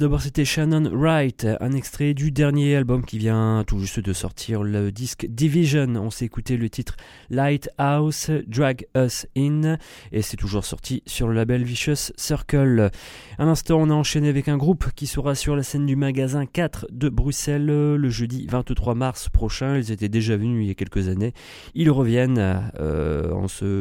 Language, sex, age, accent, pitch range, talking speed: English, male, 30-49, French, 110-145 Hz, 185 wpm